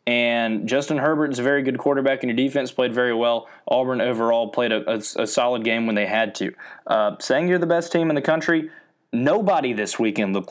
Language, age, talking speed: English, 20-39, 215 wpm